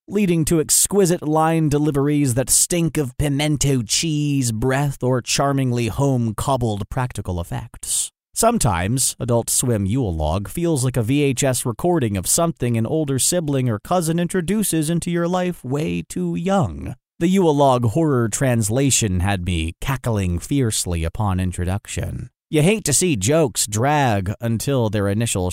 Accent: American